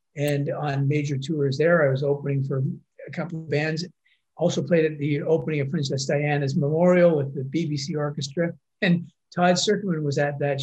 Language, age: English, 50-69